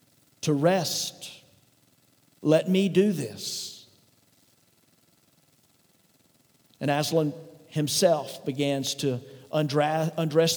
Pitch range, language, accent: 135-155 Hz, English, American